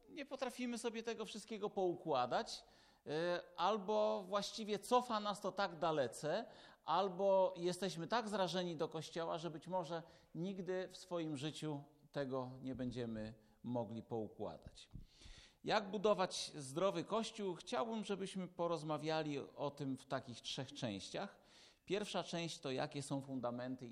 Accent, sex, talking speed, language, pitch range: native, male, 125 wpm, Polish, 125-180 Hz